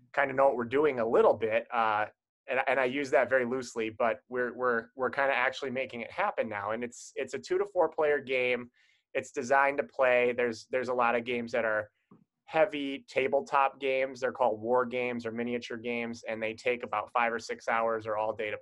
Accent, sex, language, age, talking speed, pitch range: American, male, English, 20-39, 230 wpm, 115-135 Hz